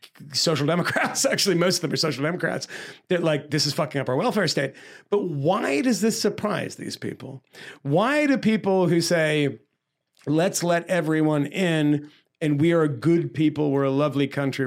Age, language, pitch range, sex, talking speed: 40-59, English, 135-175 Hz, male, 175 wpm